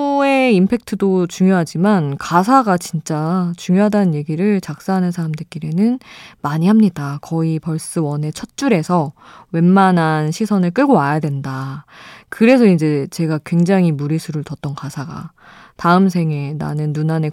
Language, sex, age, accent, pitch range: Korean, female, 20-39, native, 155-220 Hz